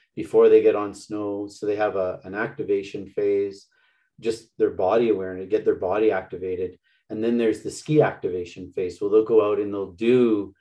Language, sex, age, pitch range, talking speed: English, male, 30-49, 100-135 Hz, 190 wpm